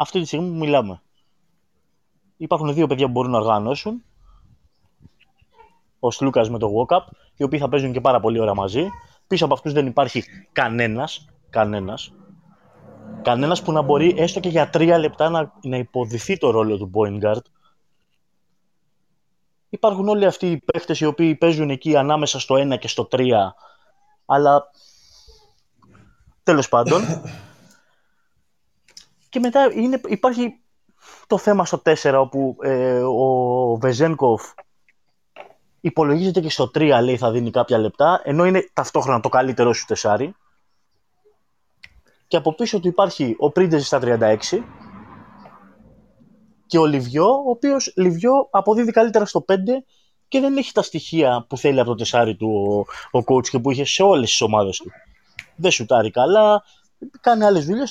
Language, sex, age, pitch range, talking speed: Greek, male, 20-39, 130-195 Hz, 145 wpm